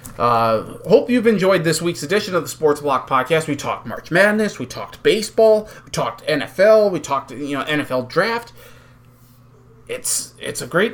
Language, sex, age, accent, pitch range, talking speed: English, male, 30-49, American, 125-170 Hz, 175 wpm